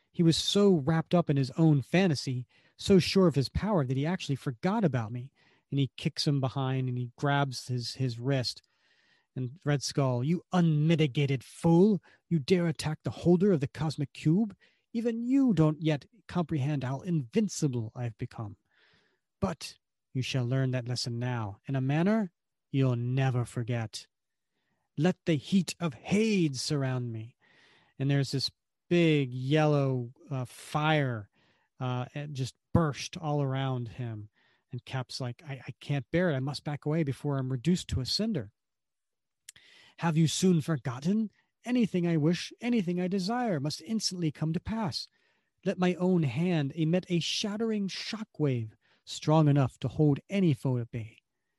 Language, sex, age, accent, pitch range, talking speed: English, male, 40-59, American, 130-175 Hz, 160 wpm